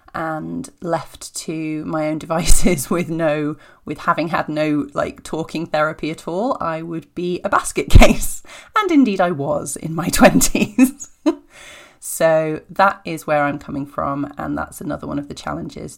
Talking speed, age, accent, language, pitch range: 165 wpm, 30-49, British, English, 155-195 Hz